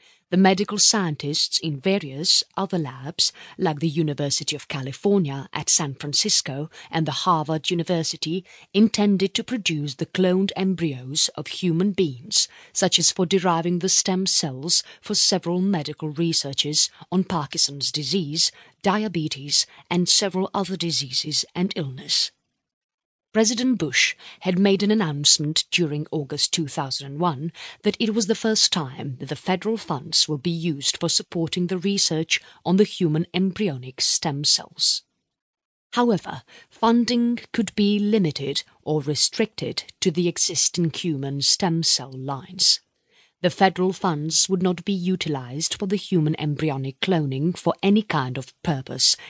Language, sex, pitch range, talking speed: English, female, 150-195 Hz, 135 wpm